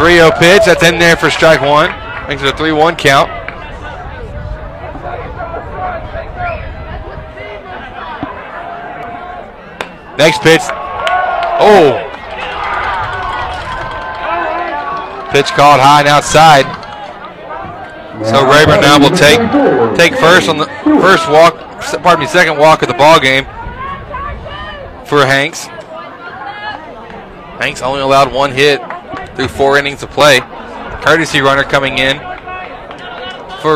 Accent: American